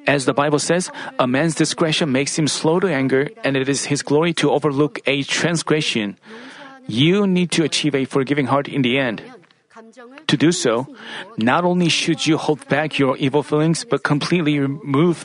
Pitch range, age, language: 150-190 Hz, 40-59, Korean